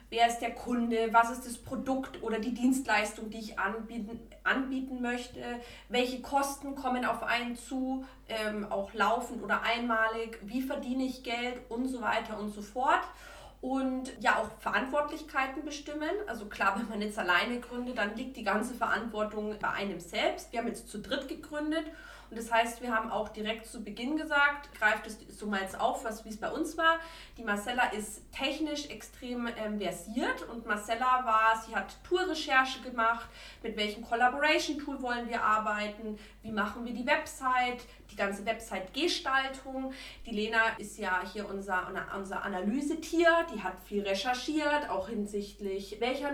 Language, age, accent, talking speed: German, 20-39, German, 165 wpm